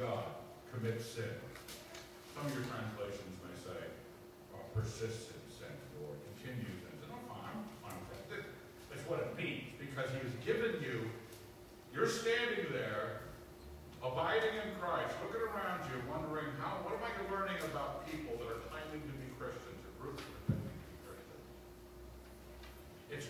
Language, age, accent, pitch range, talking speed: English, 50-69, American, 115-155 Hz, 155 wpm